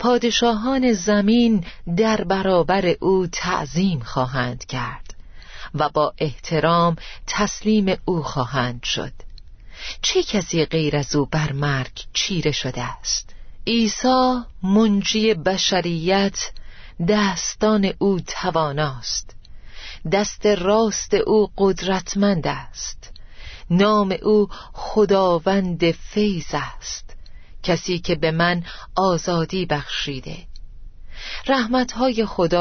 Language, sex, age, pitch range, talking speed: Persian, female, 40-59, 150-200 Hz, 90 wpm